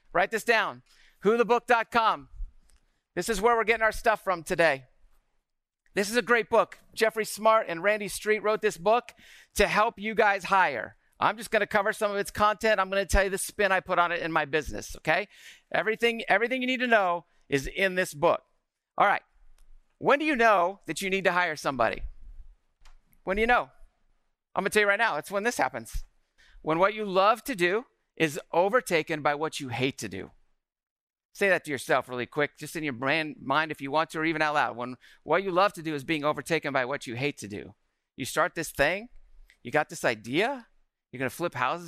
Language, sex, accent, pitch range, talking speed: English, male, American, 145-210 Hz, 215 wpm